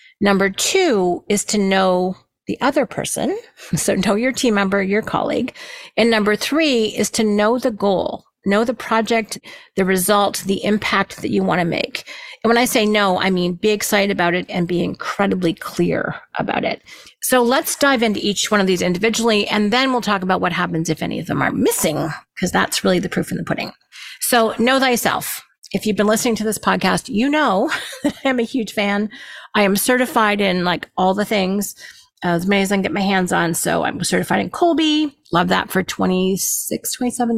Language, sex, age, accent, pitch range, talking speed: English, female, 40-59, American, 195-255 Hz, 200 wpm